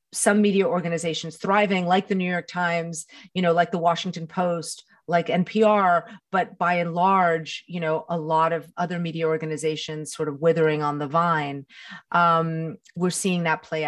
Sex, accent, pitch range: female, American, 155-190 Hz